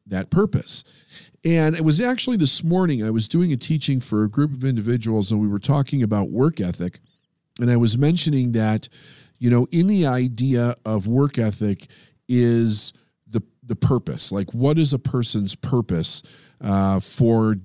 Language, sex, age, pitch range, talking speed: English, male, 50-69, 105-140 Hz, 170 wpm